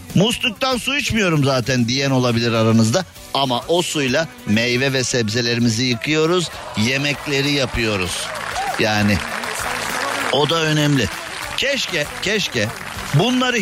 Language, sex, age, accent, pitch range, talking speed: Turkish, male, 50-69, native, 125-185 Hz, 100 wpm